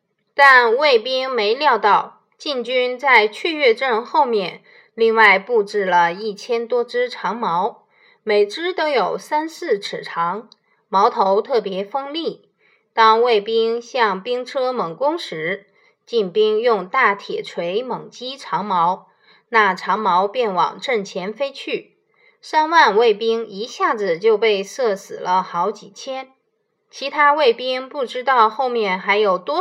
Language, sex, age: Chinese, female, 20-39